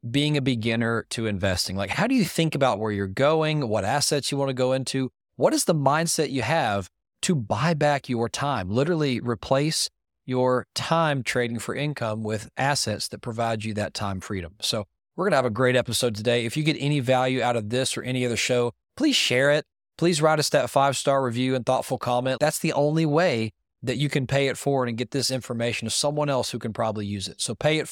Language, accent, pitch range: English, American, 110-140 Hz